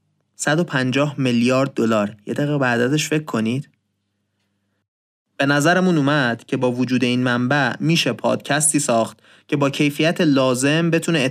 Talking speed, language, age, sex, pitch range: 135 wpm, Persian, 30-49, male, 125-170 Hz